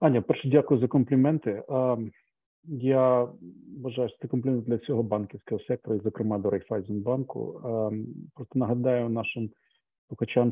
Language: Ukrainian